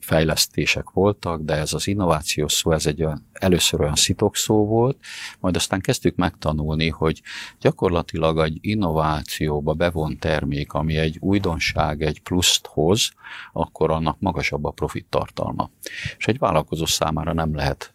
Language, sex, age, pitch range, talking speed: Hungarian, male, 50-69, 75-90 Hz, 140 wpm